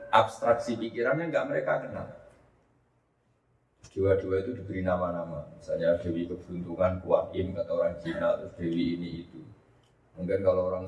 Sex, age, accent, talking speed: male, 30-49, native, 125 wpm